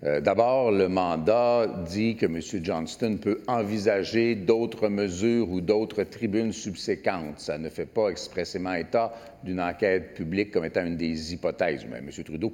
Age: 50-69